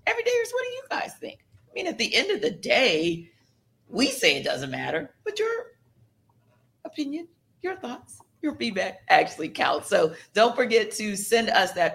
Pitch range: 155-230 Hz